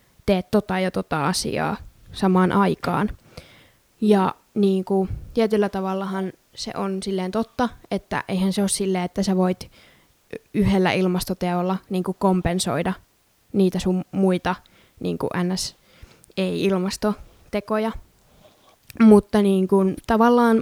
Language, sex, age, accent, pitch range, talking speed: Finnish, female, 20-39, native, 190-210 Hz, 105 wpm